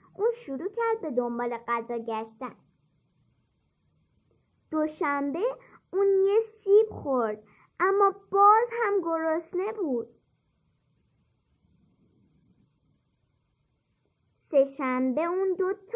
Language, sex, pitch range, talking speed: Persian, male, 250-390 Hz, 75 wpm